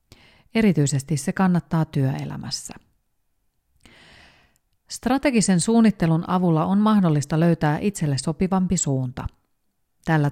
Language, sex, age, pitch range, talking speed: Finnish, female, 40-59, 140-185 Hz, 80 wpm